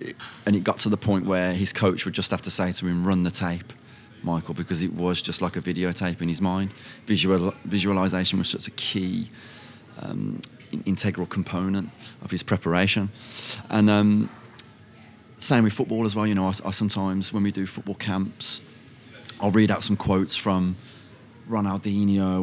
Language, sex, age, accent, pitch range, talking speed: English, male, 30-49, British, 95-115 Hz, 180 wpm